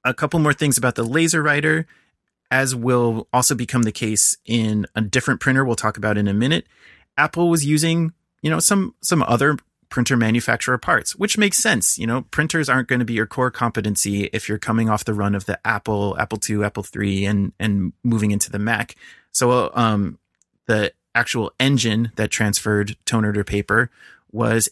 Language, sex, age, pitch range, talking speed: English, male, 30-49, 105-125 Hz, 190 wpm